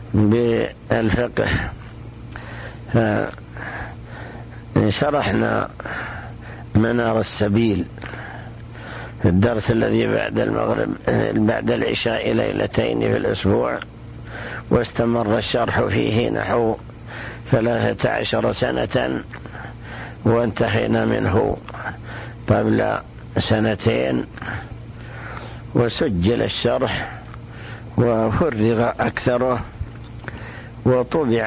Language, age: Arabic, 60-79